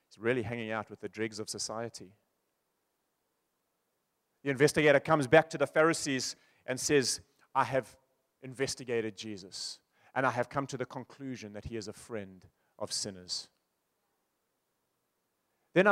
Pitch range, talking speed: 105-140 Hz, 135 wpm